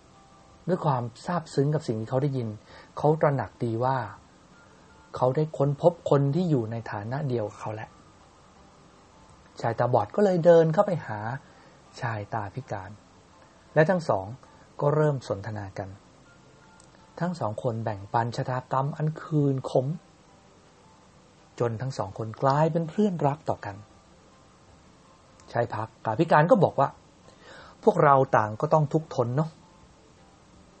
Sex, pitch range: male, 115-160 Hz